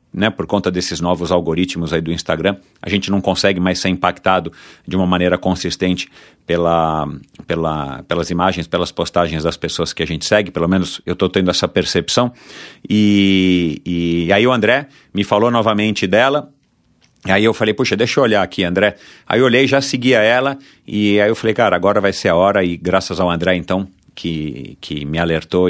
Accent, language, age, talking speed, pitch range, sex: Brazilian, Portuguese, 50-69, 195 wpm, 85-105 Hz, male